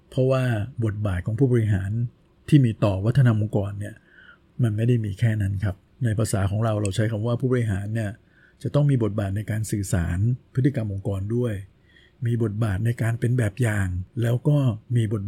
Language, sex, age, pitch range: Thai, male, 60-79, 100-120 Hz